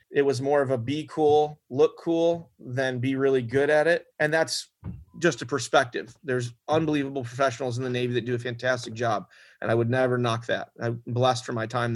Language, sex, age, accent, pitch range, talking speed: English, male, 30-49, American, 125-150 Hz, 210 wpm